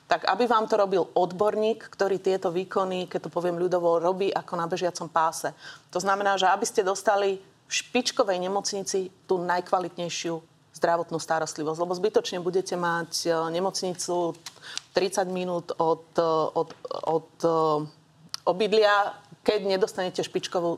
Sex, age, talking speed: female, 30-49, 125 wpm